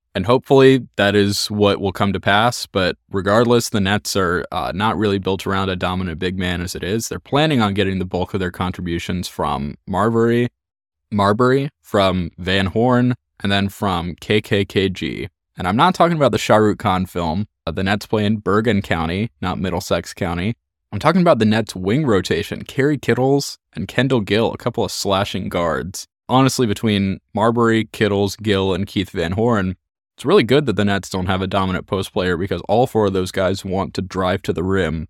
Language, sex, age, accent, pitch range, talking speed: English, male, 20-39, American, 95-110 Hz, 195 wpm